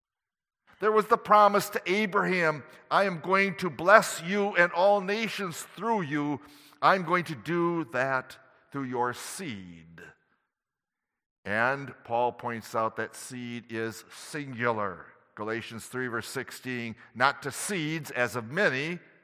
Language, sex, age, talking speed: English, male, 60-79, 135 wpm